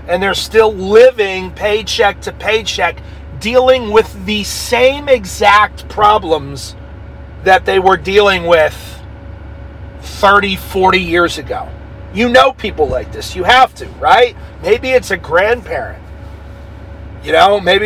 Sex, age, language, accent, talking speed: male, 40-59, English, American, 130 wpm